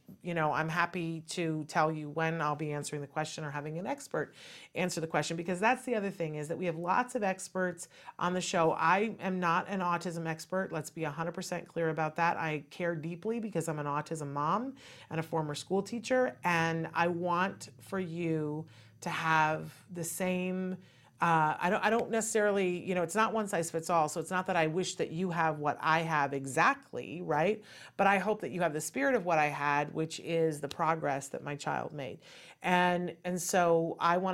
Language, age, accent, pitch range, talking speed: English, 40-59, American, 155-180 Hz, 215 wpm